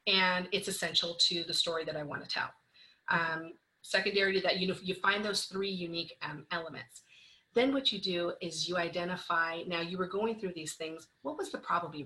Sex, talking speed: female, 215 wpm